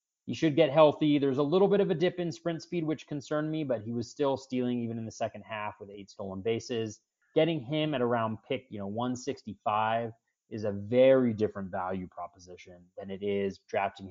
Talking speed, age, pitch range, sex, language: 210 wpm, 30-49, 100-130 Hz, male, English